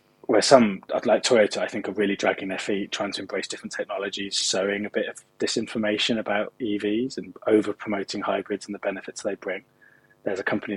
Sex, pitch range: male, 100-115 Hz